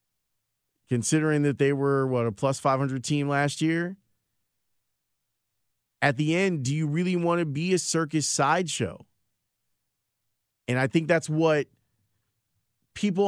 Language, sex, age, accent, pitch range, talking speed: English, male, 30-49, American, 115-165 Hz, 130 wpm